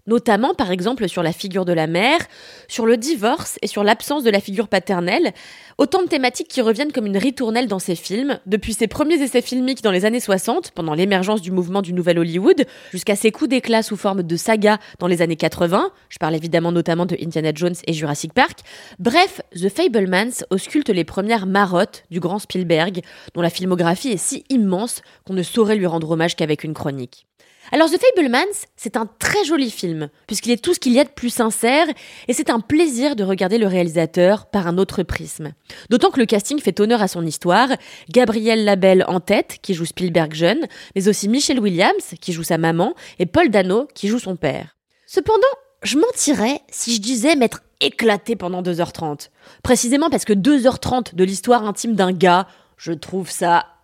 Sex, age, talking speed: female, 20-39, 195 wpm